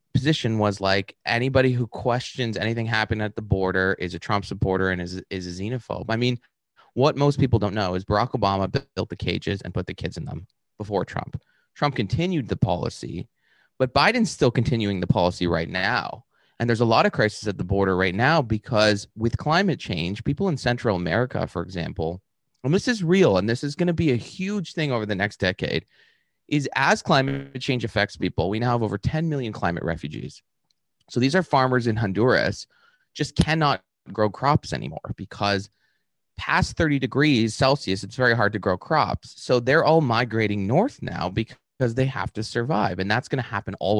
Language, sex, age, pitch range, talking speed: English, male, 30-49, 95-130 Hz, 195 wpm